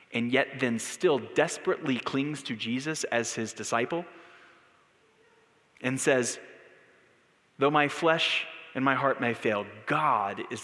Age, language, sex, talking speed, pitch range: 30-49, English, male, 130 wpm, 125-170 Hz